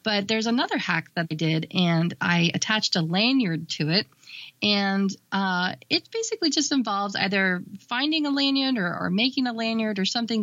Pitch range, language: 170-210 Hz, English